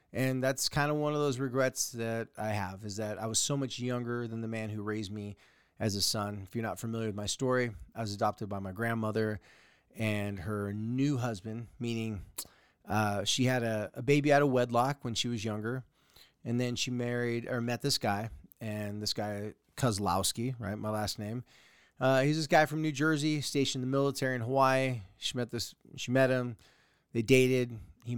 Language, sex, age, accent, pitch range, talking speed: English, male, 30-49, American, 105-130 Hz, 205 wpm